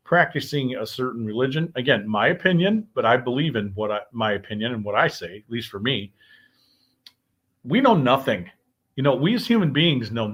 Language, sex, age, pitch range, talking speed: English, male, 40-59, 120-150 Hz, 185 wpm